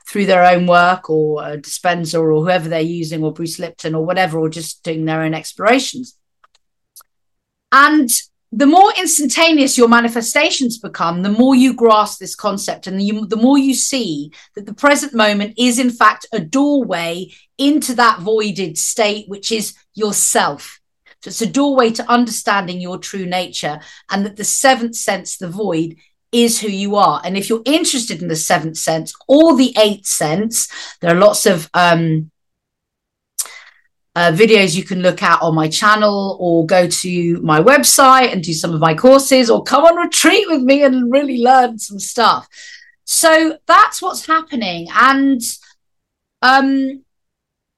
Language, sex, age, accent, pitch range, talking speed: English, female, 40-59, British, 180-265 Hz, 165 wpm